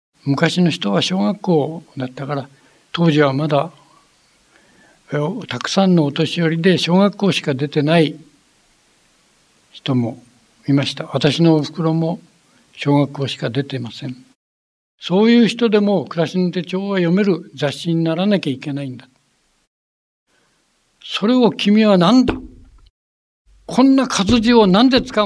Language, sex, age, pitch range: Japanese, male, 60-79, 135-200 Hz